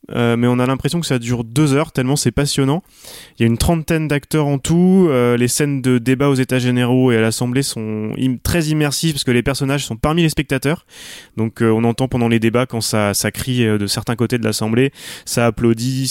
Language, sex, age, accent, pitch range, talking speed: French, male, 20-39, French, 115-140 Hz, 230 wpm